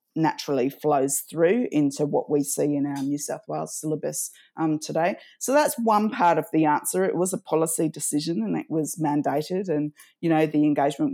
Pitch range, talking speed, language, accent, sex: 155-190 Hz, 195 wpm, English, Australian, female